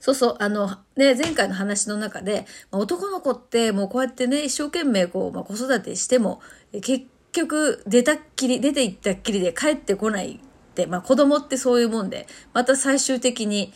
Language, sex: Japanese, female